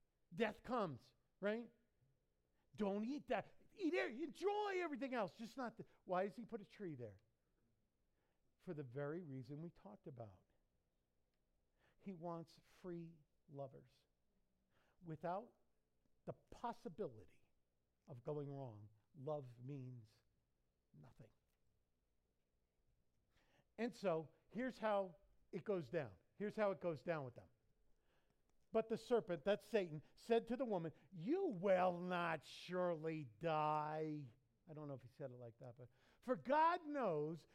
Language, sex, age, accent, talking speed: English, male, 50-69, American, 130 wpm